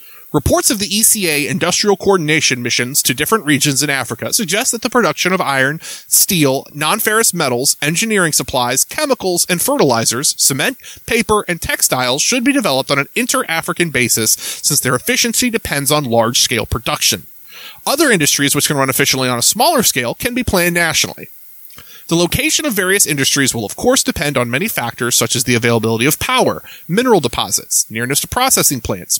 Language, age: English, 30-49